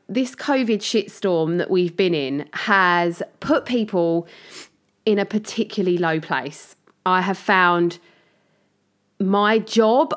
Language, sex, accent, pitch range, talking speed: English, female, British, 185-245 Hz, 120 wpm